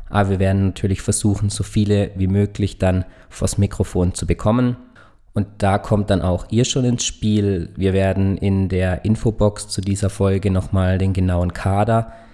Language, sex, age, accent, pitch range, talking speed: German, male, 20-39, German, 95-110 Hz, 170 wpm